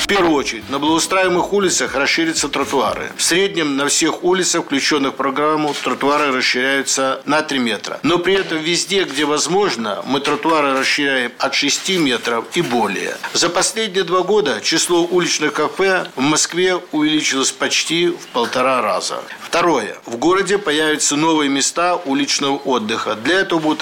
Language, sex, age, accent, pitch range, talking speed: Russian, male, 50-69, native, 140-185 Hz, 150 wpm